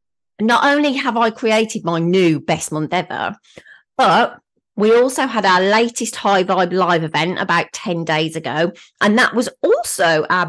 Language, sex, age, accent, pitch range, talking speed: English, female, 30-49, British, 185-270 Hz, 165 wpm